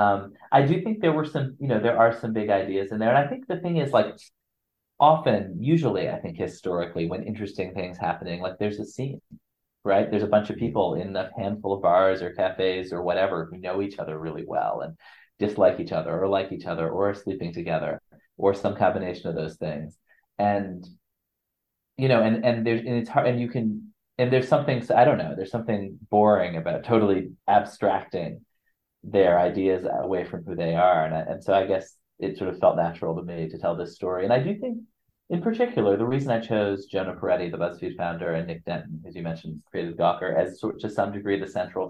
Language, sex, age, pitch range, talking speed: English, male, 30-49, 90-120 Hz, 220 wpm